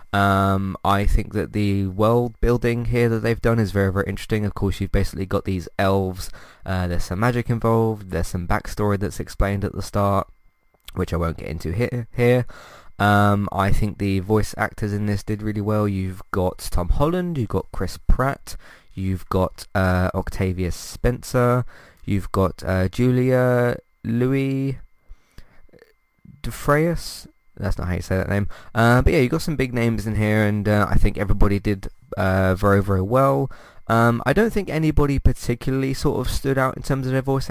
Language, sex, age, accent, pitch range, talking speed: English, male, 20-39, British, 95-115 Hz, 180 wpm